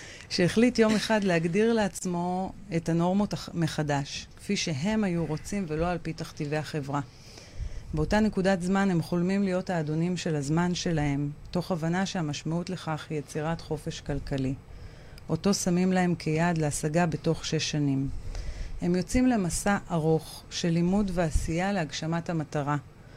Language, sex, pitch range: Hebrew, female, 150-180 Hz